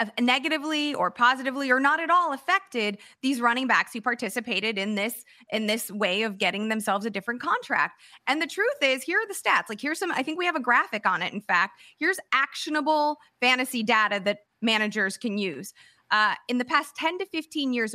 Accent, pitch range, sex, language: American, 220-295 Hz, female, English